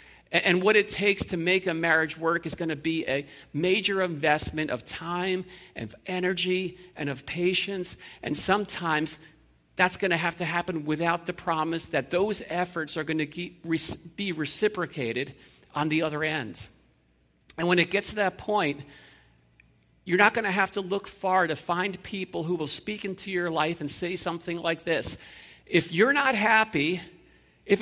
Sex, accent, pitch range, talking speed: male, American, 150-190 Hz, 180 wpm